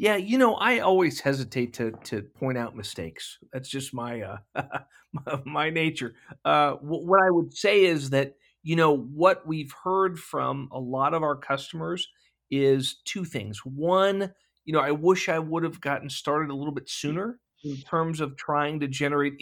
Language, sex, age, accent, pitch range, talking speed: English, male, 40-59, American, 130-165 Hz, 185 wpm